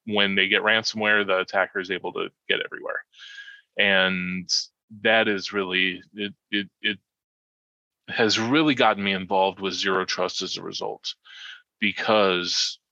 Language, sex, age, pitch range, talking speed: English, male, 30-49, 95-120 Hz, 140 wpm